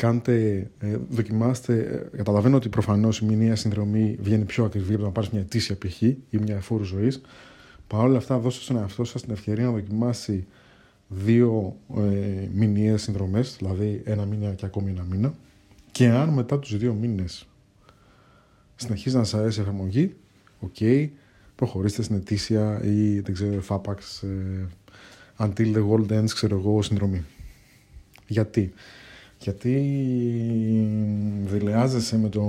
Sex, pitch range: male, 100-120 Hz